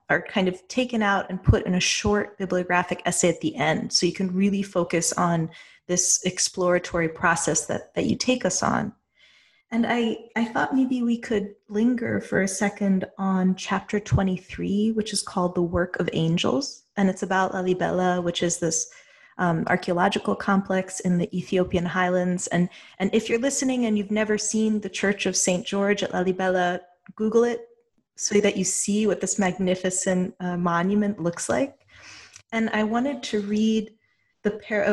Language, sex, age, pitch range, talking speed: English, female, 20-39, 180-220 Hz, 170 wpm